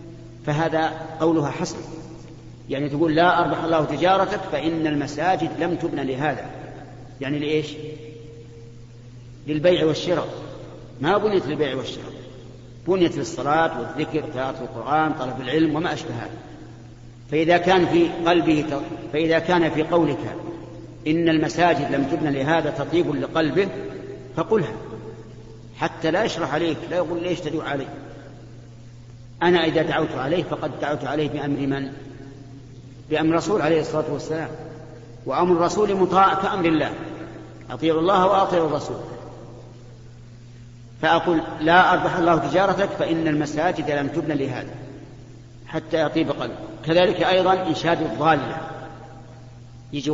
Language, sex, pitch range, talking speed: Arabic, male, 125-165 Hz, 115 wpm